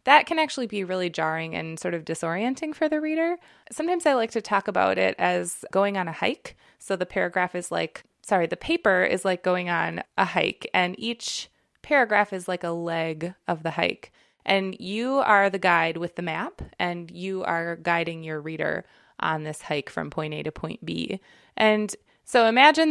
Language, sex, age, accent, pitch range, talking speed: English, female, 20-39, American, 170-225 Hz, 195 wpm